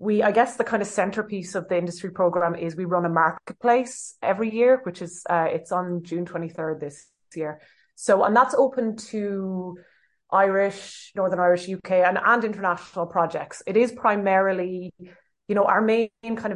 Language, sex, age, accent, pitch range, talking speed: English, female, 20-39, Irish, 165-200 Hz, 175 wpm